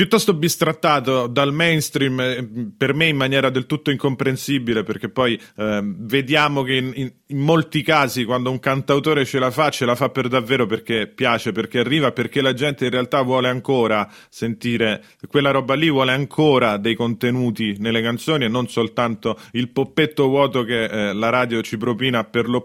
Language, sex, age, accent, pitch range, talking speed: Italian, male, 30-49, native, 115-145 Hz, 175 wpm